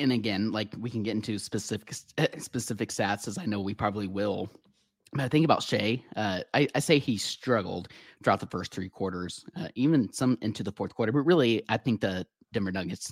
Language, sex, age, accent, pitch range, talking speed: English, male, 30-49, American, 95-115 Hz, 210 wpm